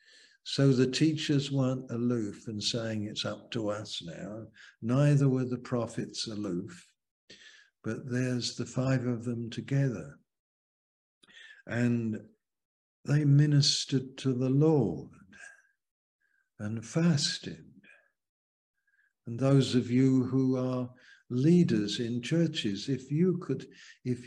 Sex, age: male, 60-79